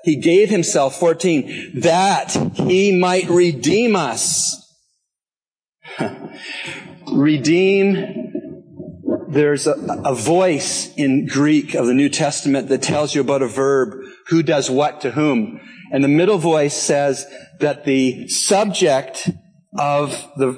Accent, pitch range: American, 135-180 Hz